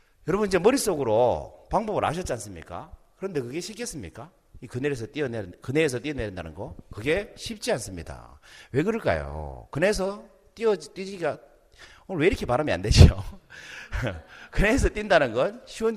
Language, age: Korean, 40-59